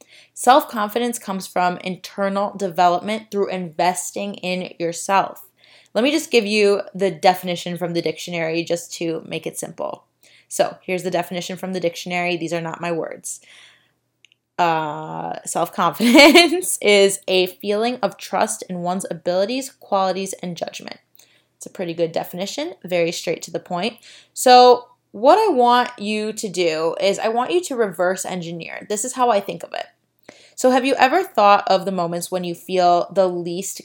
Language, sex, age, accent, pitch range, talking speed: English, female, 20-39, American, 175-230 Hz, 165 wpm